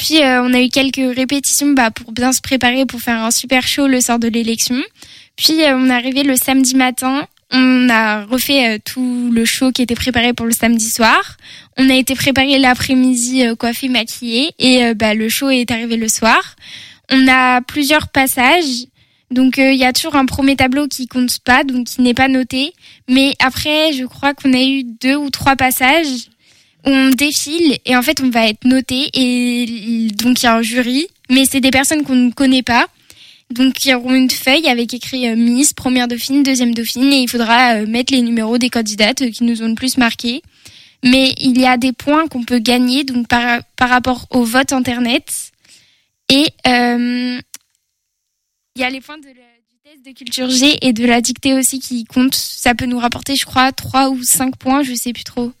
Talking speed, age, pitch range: 205 wpm, 10-29, 240-265 Hz